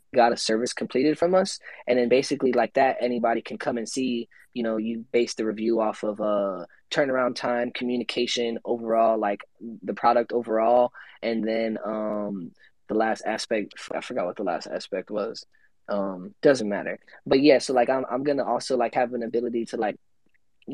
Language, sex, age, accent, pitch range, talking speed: English, male, 20-39, American, 115-140 Hz, 190 wpm